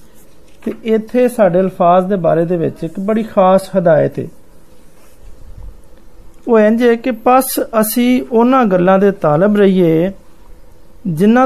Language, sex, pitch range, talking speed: Hindi, male, 175-225 Hz, 65 wpm